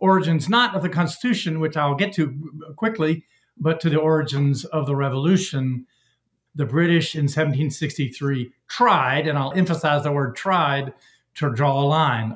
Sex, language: male, English